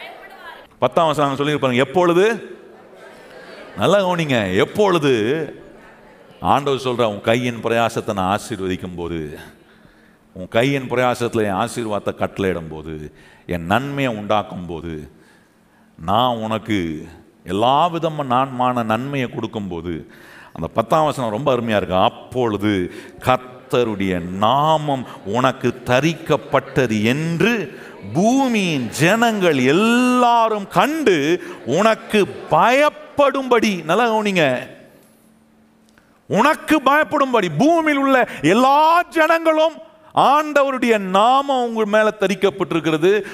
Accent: native